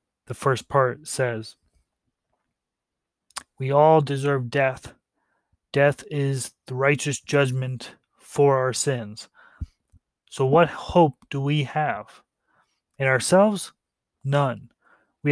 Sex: male